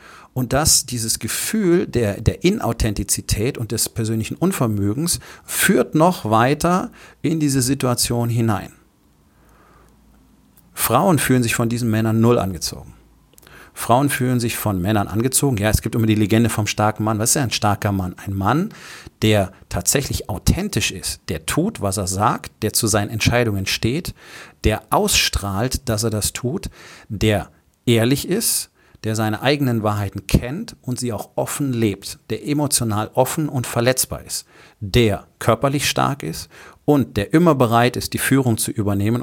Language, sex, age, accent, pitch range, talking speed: German, male, 40-59, German, 105-125 Hz, 150 wpm